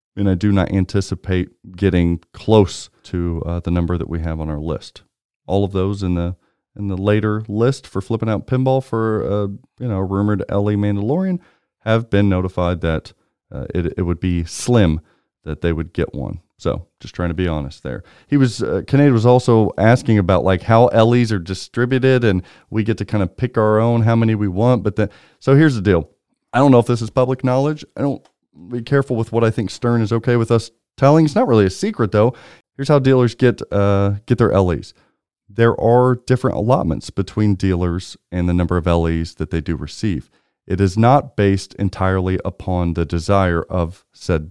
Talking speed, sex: 210 wpm, male